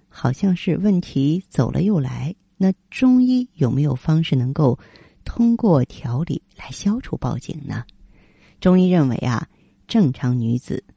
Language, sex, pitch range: Chinese, female, 125-175 Hz